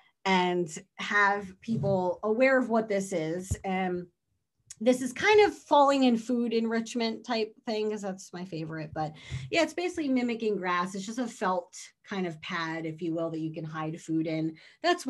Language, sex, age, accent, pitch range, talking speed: English, female, 30-49, American, 170-230 Hz, 185 wpm